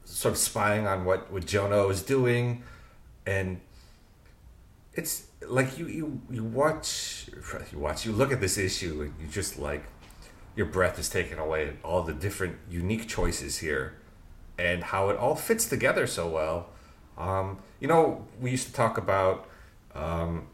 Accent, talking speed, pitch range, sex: American, 160 wpm, 90-115 Hz, male